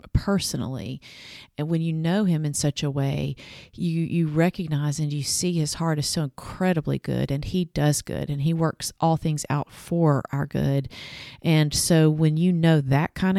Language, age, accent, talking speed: English, 40-59, American, 190 wpm